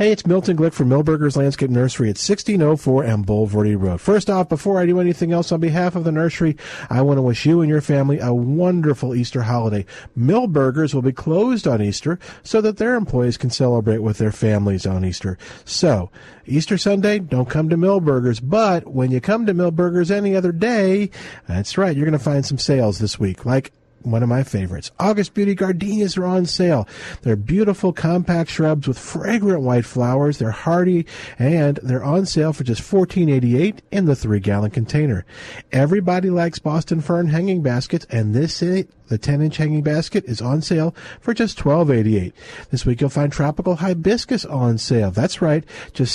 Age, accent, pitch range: 50-69, American, 125-180 Hz